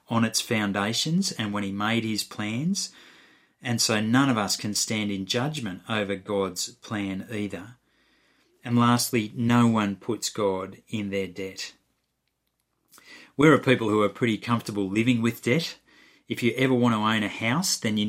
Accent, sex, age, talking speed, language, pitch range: Australian, male, 30-49, 170 wpm, English, 100-125 Hz